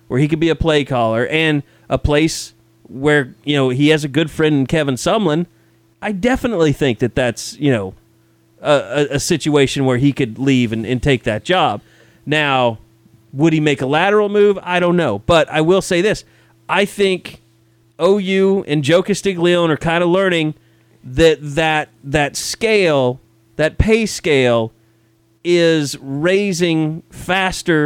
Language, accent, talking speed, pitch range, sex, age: English, American, 160 wpm, 115-160 Hz, male, 30-49